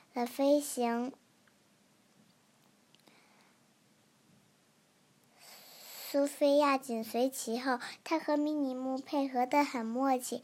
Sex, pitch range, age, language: male, 240-275 Hz, 10-29, Chinese